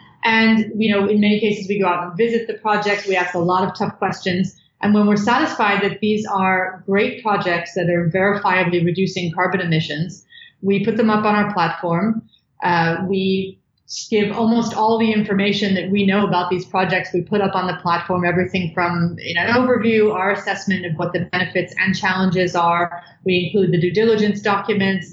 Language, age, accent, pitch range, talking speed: English, 30-49, American, 180-210 Hz, 195 wpm